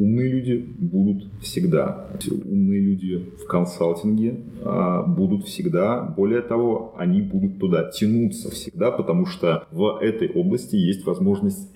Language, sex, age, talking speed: Russian, male, 30-49, 125 wpm